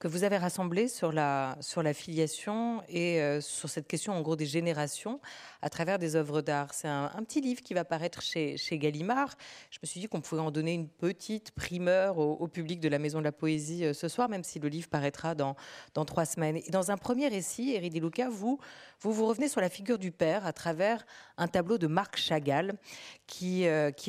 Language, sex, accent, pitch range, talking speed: French, female, French, 155-215 Hz, 225 wpm